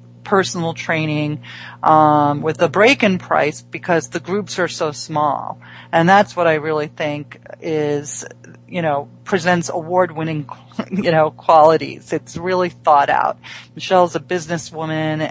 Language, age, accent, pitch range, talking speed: English, 40-59, American, 150-175 Hz, 140 wpm